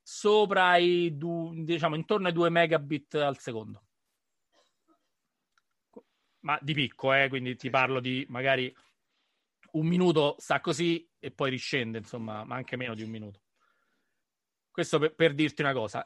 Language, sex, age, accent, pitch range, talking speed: Italian, male, 30-49, native, 135-175 Hz, 145 wpm